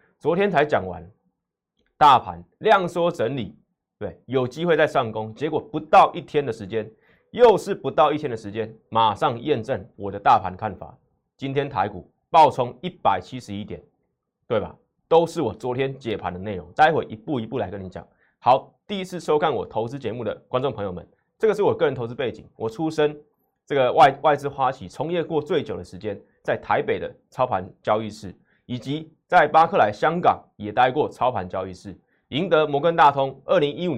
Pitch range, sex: 105-155 Hz, male